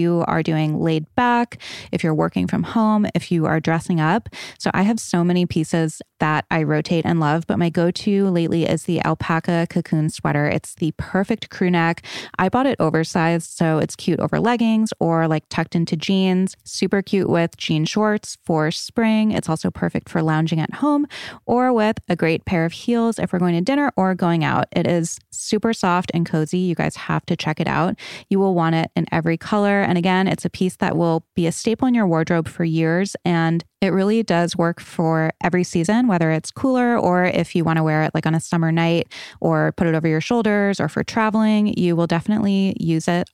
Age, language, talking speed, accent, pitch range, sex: 20-39, English, 215 wpm, American, 165-210 Hz, female